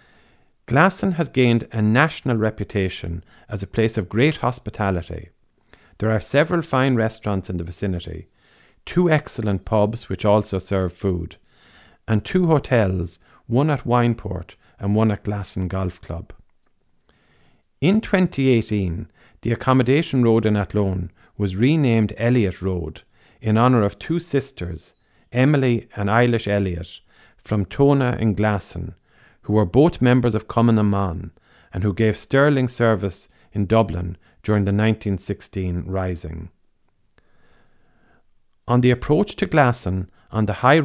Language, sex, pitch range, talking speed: English, male, 95-125 Hz, 130 wpm